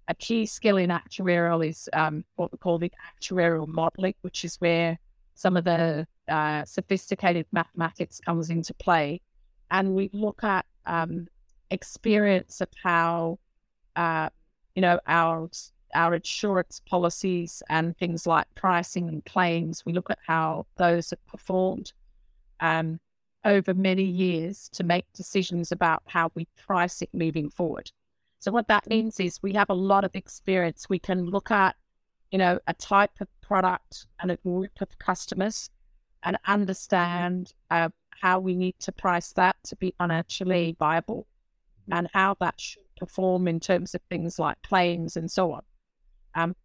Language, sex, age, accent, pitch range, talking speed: English, female, 30-49, British, 170-190 Hz, 155 wpm